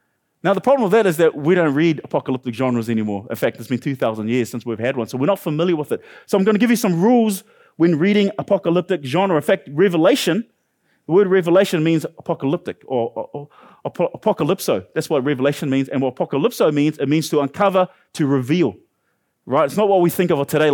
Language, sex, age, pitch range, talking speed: English, male, 30-49, 140-190 Hz, 215 wpm